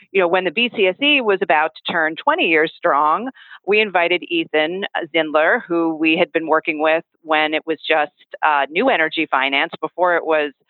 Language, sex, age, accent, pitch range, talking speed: English, female, 40-59, American, 155-180 Hz, 185 wpm